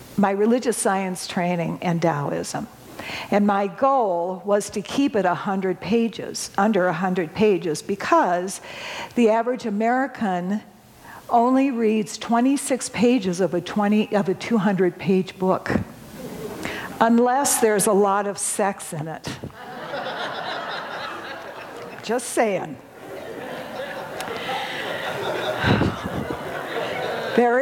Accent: American